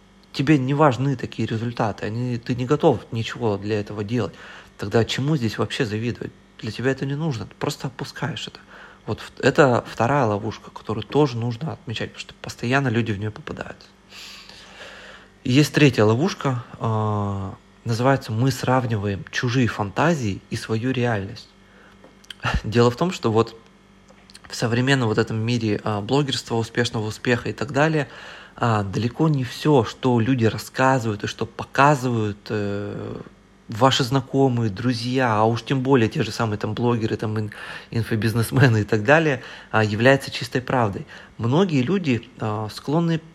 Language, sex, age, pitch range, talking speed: Russian, male, 30-49, 110-135 Hz, 135 wpm